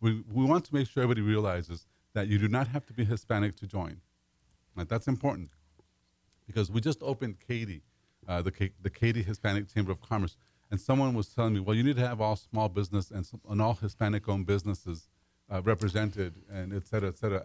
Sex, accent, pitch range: male, American, 95-115 Hz